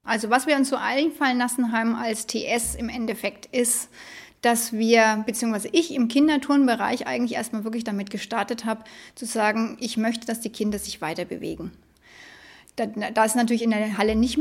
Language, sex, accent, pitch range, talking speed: German, female, German, 215-275 Hz, 175 wpm